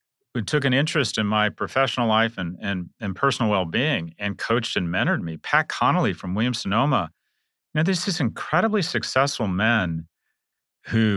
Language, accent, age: English, American, 40-59